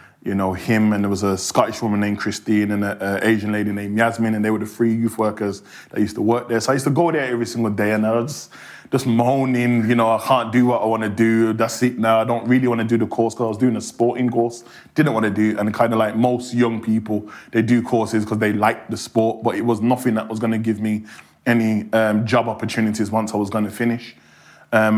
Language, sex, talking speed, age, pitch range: English, male, 270 wpm, 20-39, 110-130 Hz